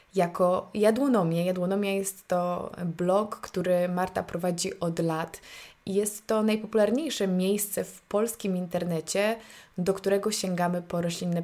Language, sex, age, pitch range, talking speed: Polish, female, 20-39, 170-195 Hz, 120 wpm